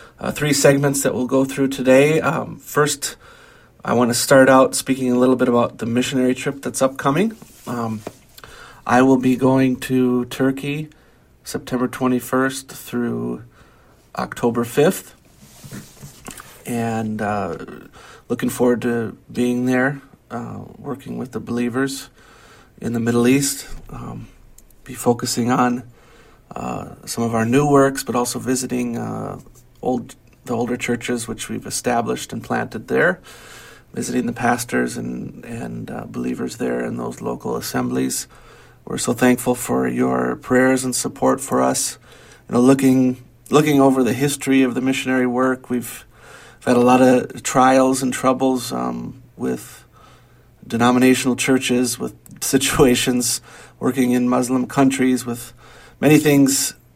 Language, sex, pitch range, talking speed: English, male, 120-130 Hz, 140 wpm